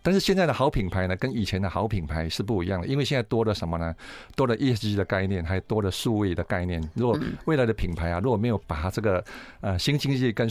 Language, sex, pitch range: Chinese, male, 95-125 Hz